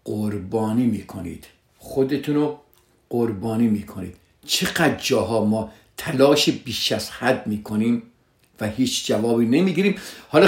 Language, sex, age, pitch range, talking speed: Persian, male, 50-69, 115-160 Hz, 130 wpm